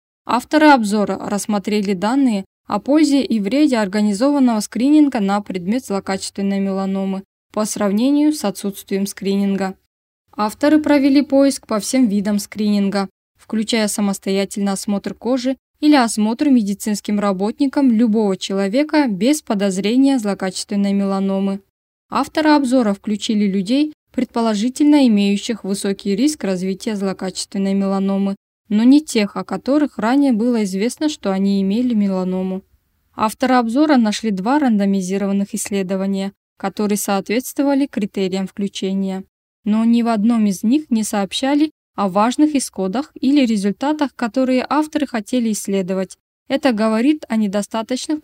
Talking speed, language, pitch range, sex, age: 115 wpm, Russian, 195-260 Hz, female, 10-29